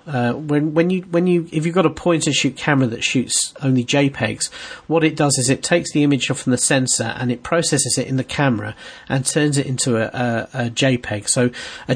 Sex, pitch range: male, 120-150 Hz